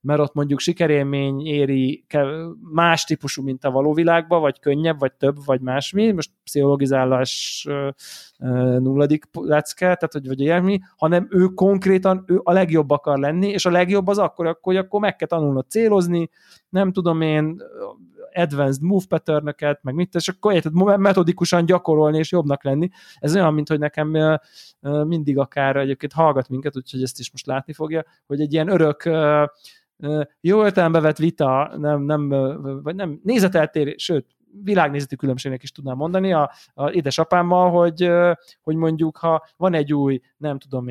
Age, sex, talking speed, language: 20-39, male, 160 wpm, Hungarian